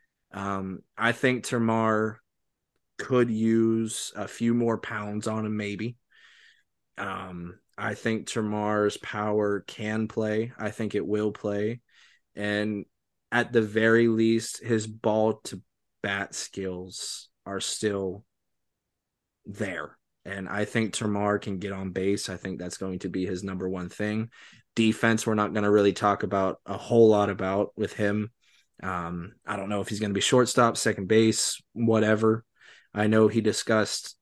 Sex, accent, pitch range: male, American, 100-115 Hz